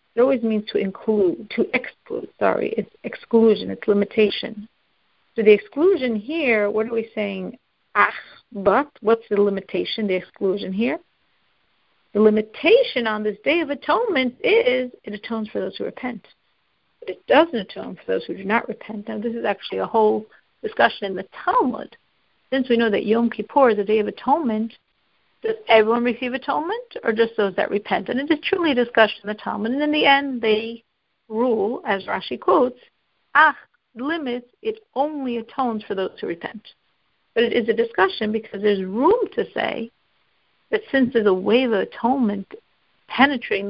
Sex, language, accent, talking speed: female, English, American, 175 wpm